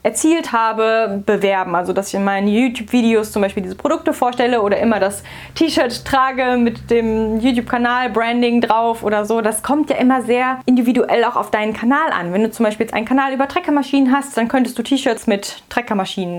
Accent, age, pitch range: German, 10-29, 210-255 Hz